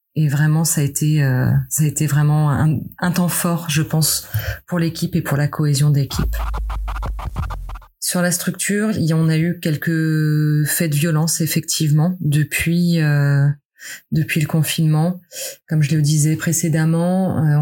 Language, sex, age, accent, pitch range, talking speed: French, female, 20-39, French, 145-165 Hz, 155 wpm